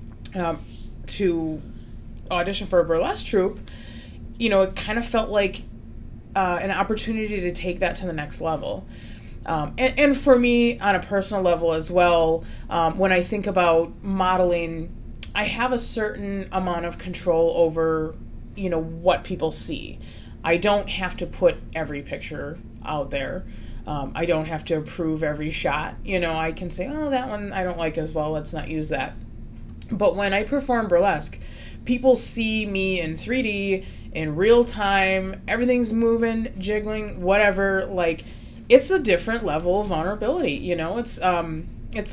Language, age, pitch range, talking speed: English, 30-49, 165-210 Hz, 165 wpm